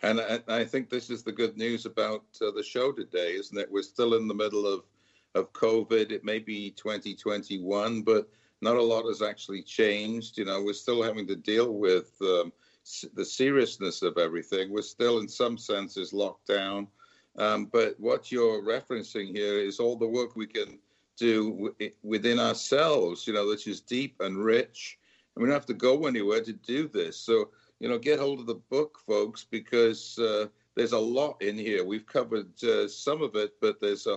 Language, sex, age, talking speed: English, male, 60-79, 195 wpm